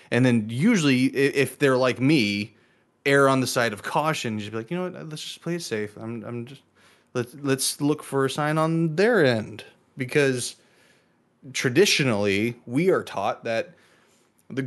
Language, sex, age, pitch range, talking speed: English, male, 20-39, 105-130 Hz, 175 wpm